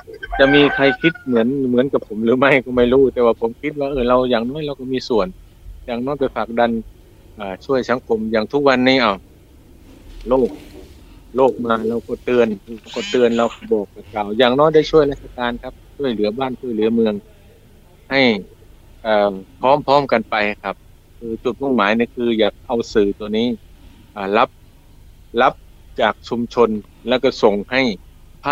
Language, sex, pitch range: Thai, male, 105-130 Hz